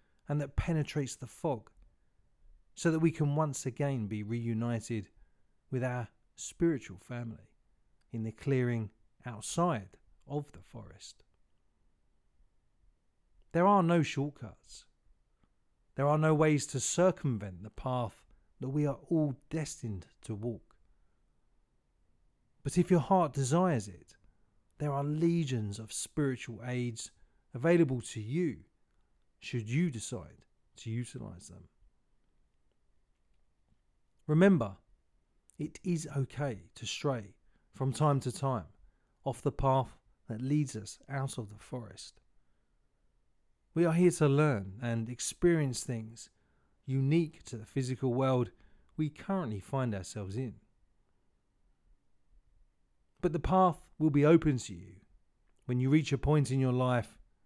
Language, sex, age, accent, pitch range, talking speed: English, male, 40-59, British, 110-150 Hz, 125 wpm